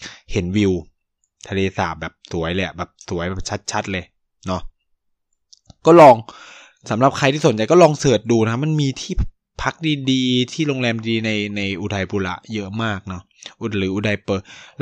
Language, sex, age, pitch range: Thai, male, 20-39, 100-135 Hz